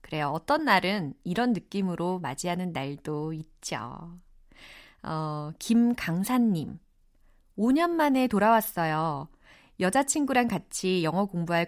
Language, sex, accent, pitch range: Korean, female, native, 165-240 Hz